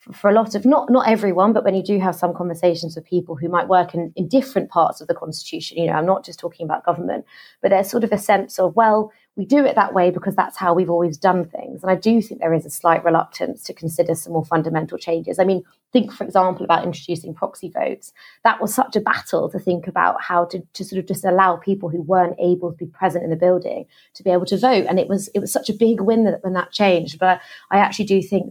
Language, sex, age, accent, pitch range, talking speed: English, female, 20-39, British, 165-190 Hz, 265 wpm